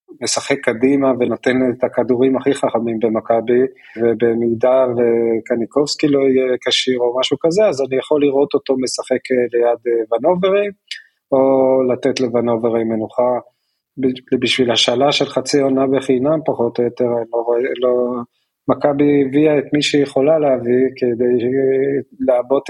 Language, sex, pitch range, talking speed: Hebrew, male, 120-135 Hz, 125 wpm